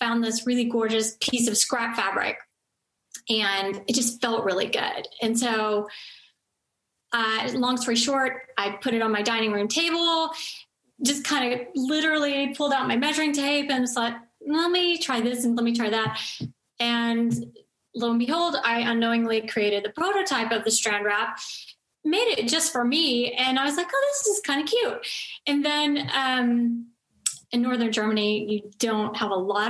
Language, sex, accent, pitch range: English, female, American, 230-295 Hz